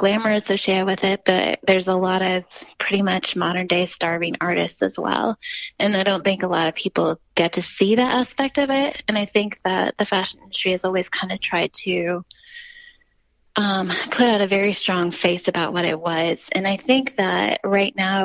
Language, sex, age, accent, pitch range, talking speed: English, female, 20-39, American, 175-210 Hz, 205 wpm